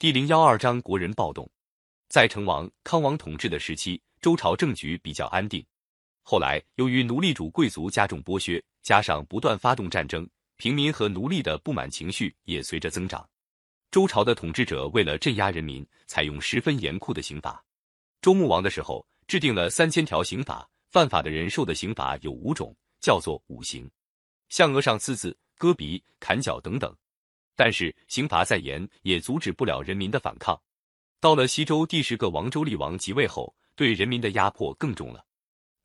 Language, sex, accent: Chinese, male, native